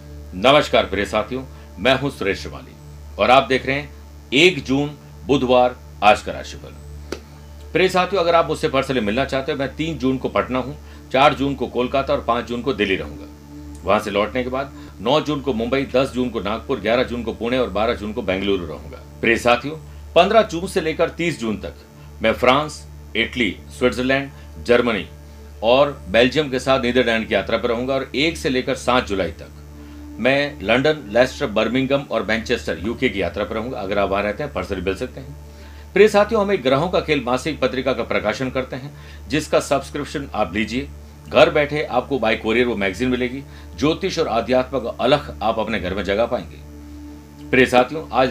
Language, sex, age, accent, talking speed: Hindi, male, 50-69, native, 190 wpm